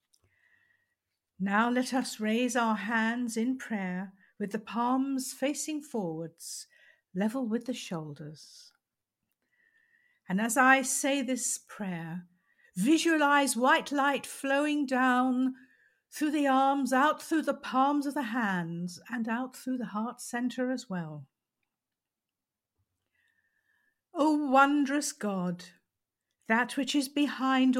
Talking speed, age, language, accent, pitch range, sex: 115 wpm, 60-79, English, British, 215-295 Hz, female